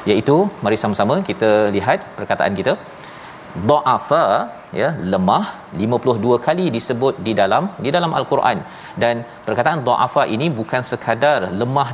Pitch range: 100-125 Hz